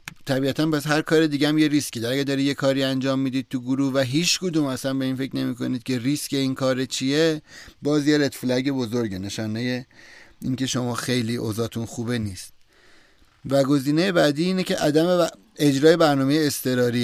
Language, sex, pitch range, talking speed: Persian, male, 120-150 Hz, 180 wpm